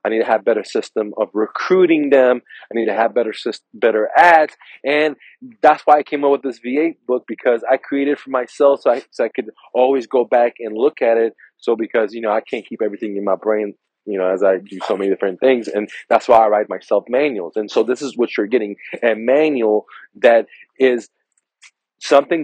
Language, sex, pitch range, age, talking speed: English, male, 105-130 Hz, 20-39, 225 wpm